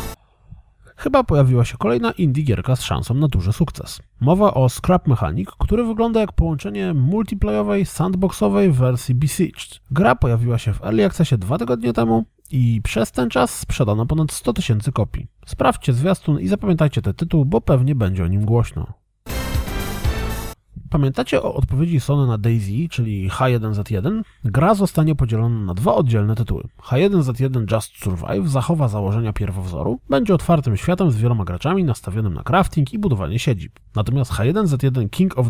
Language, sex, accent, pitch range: Polish, male, native, 110-165 Hz